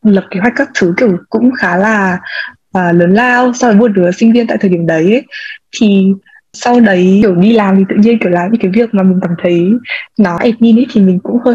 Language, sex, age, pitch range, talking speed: English, female, 20-39, 185-230 Hz, 245 wpm